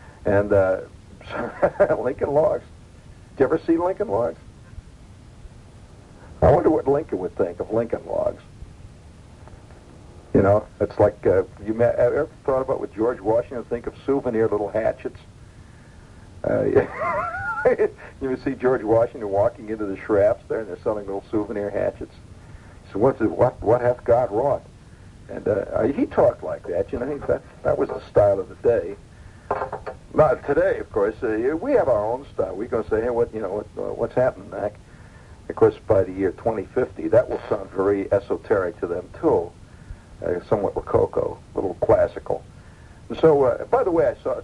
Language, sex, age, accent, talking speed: English, male, 60-79, American, 175 wpm